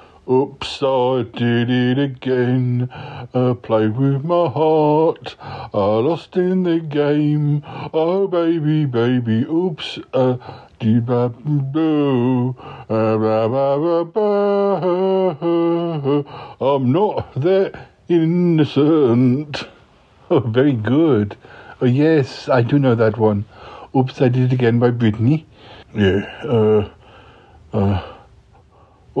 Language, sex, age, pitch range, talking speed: English, male, 60-79, 115-160 Hz, 100 wpm